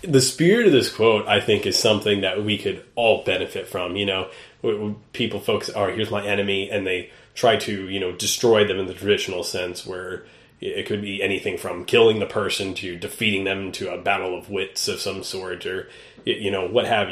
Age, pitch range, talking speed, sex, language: 30-49, 95-105 Hz, 215 wpm, male, English